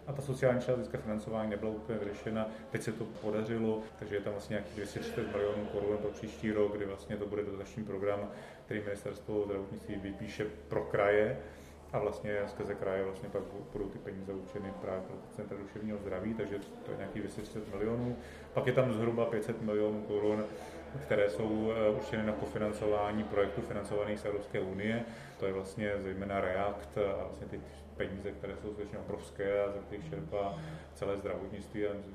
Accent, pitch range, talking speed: native, 100-110 Hz, 175 wpm